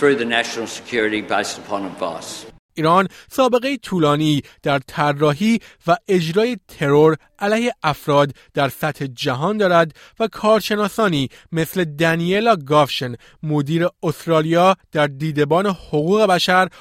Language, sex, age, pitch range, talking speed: Persian, male, 30-49, 140-185 Hz, 95 wpm